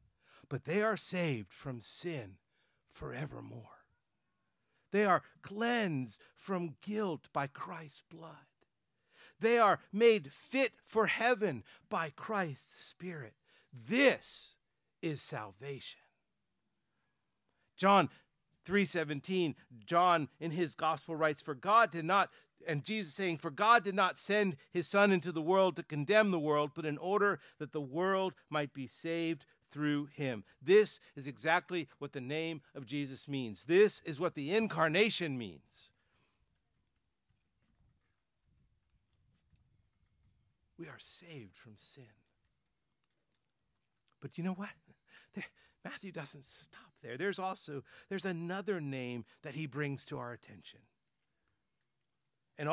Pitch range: 140-190 Hz